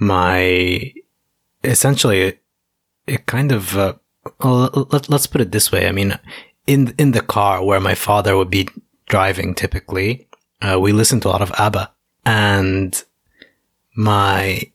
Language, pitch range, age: English, 95-120 Hz, 20-39